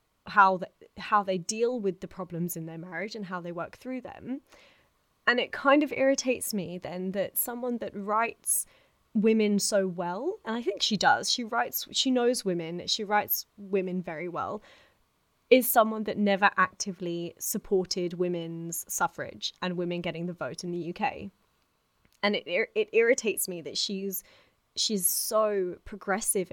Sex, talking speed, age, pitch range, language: female, 165 wpm, 20-39, 185-235 Hz, English